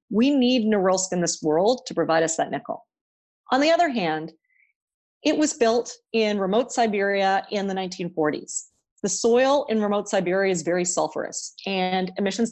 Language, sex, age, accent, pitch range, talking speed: English, female, 40-59, American, 180-240 Hz, 165 wpm